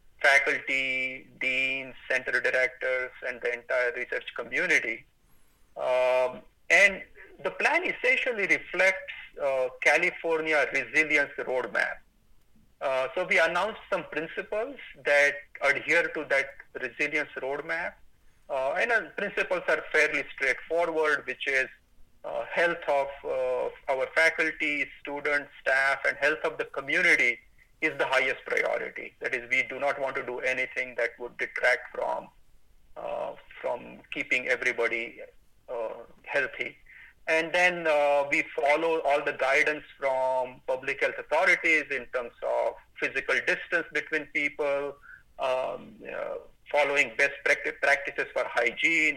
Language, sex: English, male